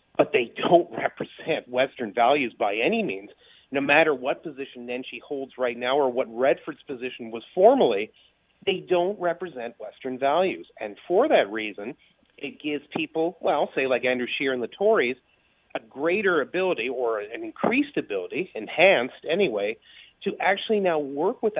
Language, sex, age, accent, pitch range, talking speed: English, male, 40-59, American, 125-180 Hz, 160 wpm